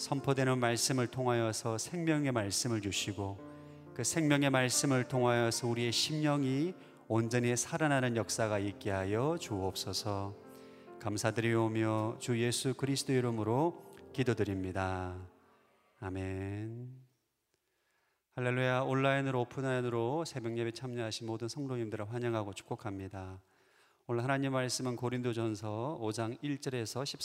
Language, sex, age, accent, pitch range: Korean, male, 30-49, native, 105-130 Hz